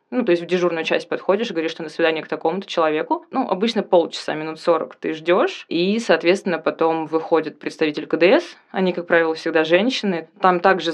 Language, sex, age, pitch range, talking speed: Russian, female, 20-39, 160-195 Hz, 190 wpm